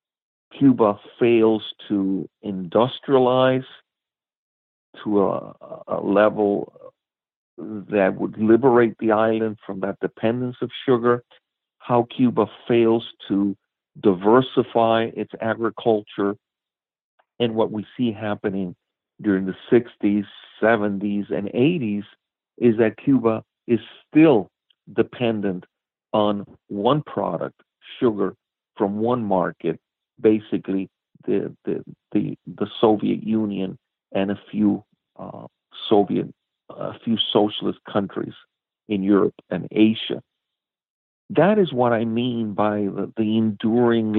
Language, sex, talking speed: English, male, 105 wpm